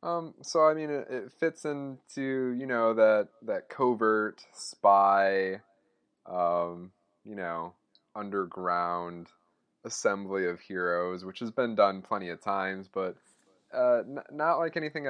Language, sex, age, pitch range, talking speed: English, male, 20-39, 90-115 Hz, 135 wpm